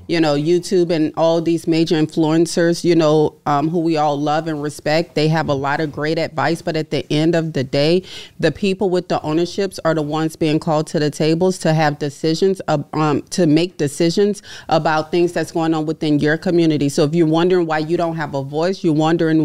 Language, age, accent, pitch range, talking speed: English, 30-49, American, 155-175 Hz, 220 wpm